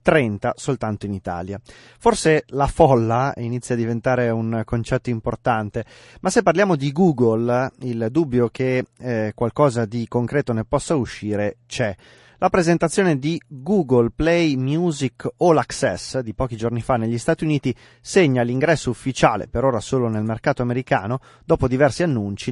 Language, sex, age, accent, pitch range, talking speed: Italian, male, 30-49, native, 115-150 Hz, 150 wpm